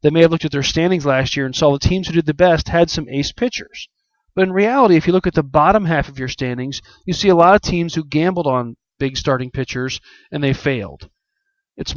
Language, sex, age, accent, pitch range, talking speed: English, male, 40-59, American, 135-170 Hz, 250 wpm